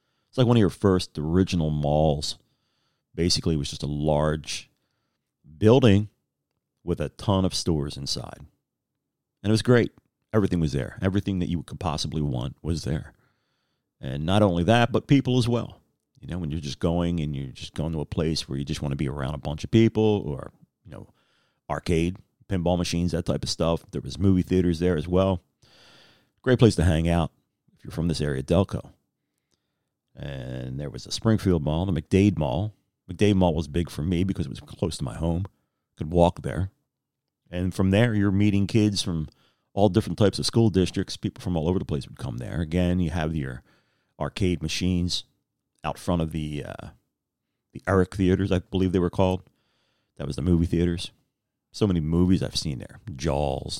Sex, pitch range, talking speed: male, 80-100 Hz, 195 wpm